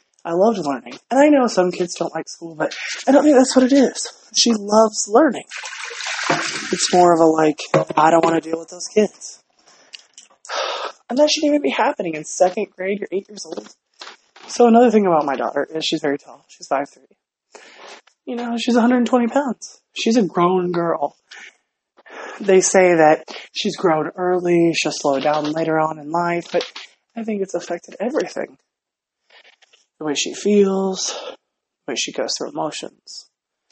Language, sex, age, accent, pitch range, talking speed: English, male, 20-39, American, 155-235 Hz, 175 wpm